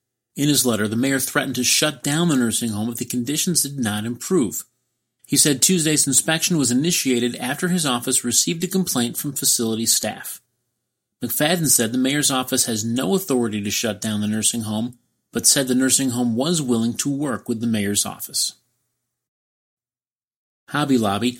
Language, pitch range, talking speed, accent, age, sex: English, 115-150 Hz, 175 wpm, American, 30-49, male